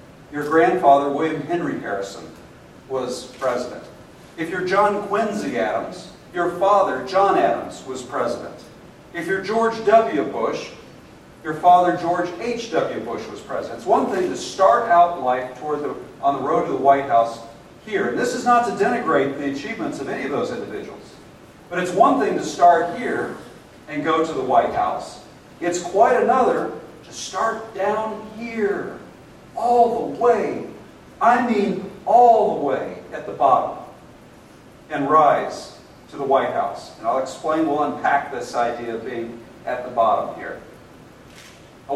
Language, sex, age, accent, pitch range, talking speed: English, male, 50-69, American, 135-200 Hz, 160 wpm